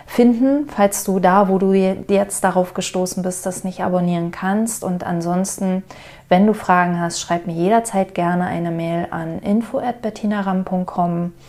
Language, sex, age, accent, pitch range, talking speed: German, female, 30-49, German, 160-185 Hz, 145 wpm